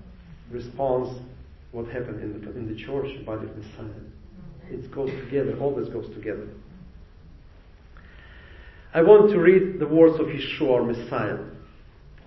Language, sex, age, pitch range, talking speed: English, male, 40-59, 110-180 Hz, 130 wpm